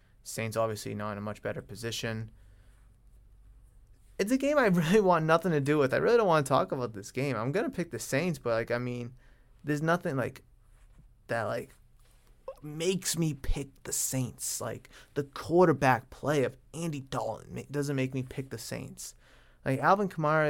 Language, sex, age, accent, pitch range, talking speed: English, male, 20-39, American, 120-150 Hz, 185 wpm